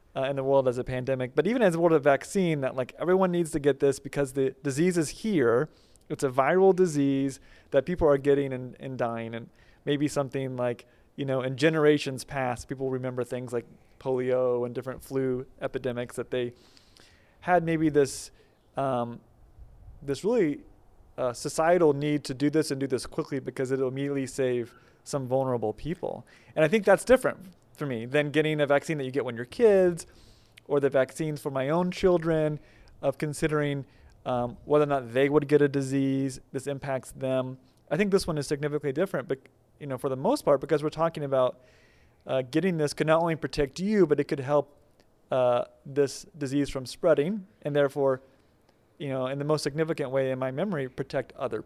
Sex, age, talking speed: male, 30-49, 195 wpm